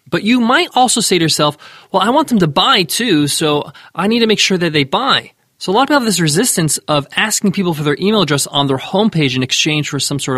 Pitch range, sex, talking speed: 150-215 Hz, male, 265 wpm